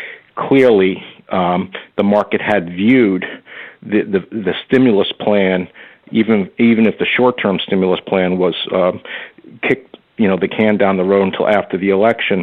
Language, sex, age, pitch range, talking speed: English, male, 50-69, 95-115 Hz, 155 wpm